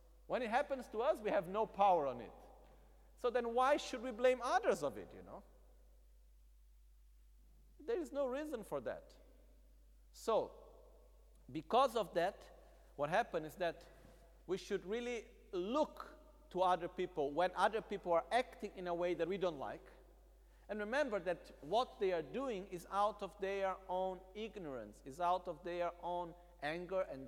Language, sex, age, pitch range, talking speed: Italian, male, 50-69, 145-205 Hz, 165 wpm